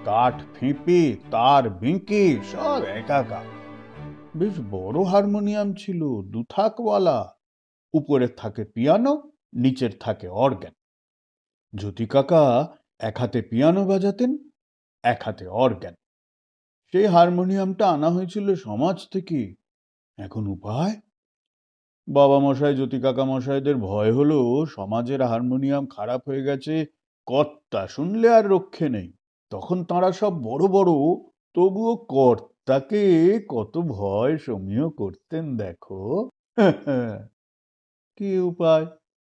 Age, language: 50-69, Bengali